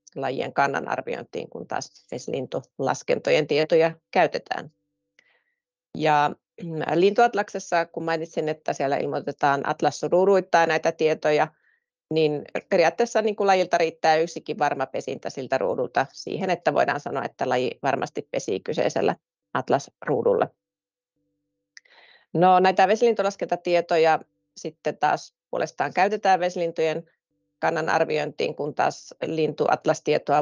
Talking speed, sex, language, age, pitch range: 105 wpm, female, Finnish, 30-49, 145-185 Hz